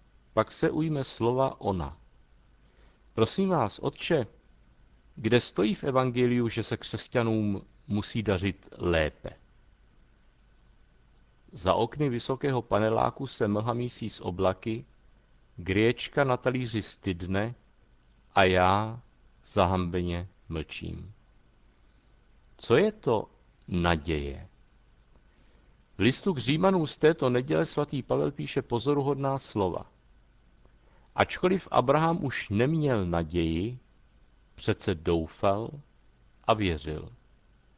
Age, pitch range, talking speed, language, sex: 50-69, 95-130 Hz, 95 wpm, Czech, male